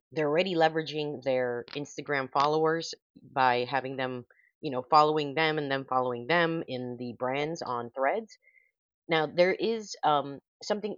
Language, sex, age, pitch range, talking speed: English, female, 30-49, 130-160 Hz, 150 wpm